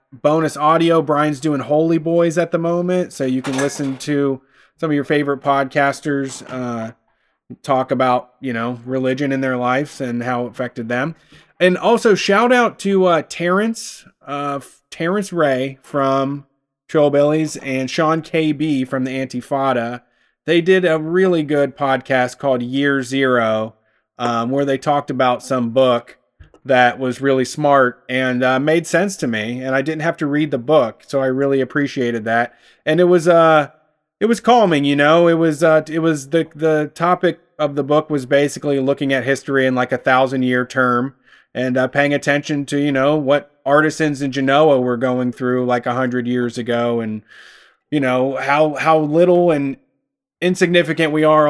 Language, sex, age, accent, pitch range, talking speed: English, male, 30-49, American, 130-155 Hz, 175 wpm